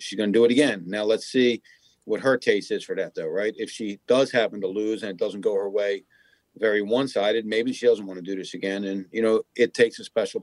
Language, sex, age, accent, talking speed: English, male, 40-59, American, 270 wpm